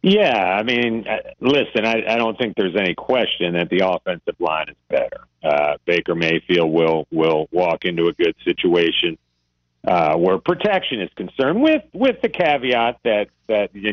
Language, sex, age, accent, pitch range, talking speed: English, male, 50-69, American, 95-150 Hz, 170 wpm